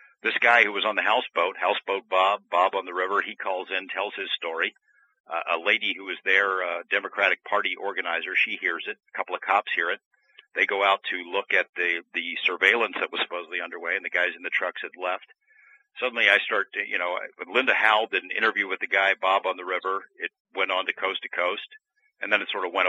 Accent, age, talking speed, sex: American, 50-69, 235 wpm, male